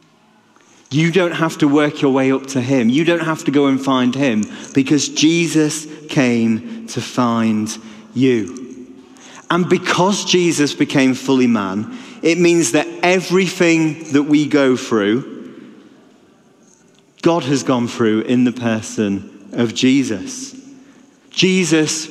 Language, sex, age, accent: English, male, 30-49, British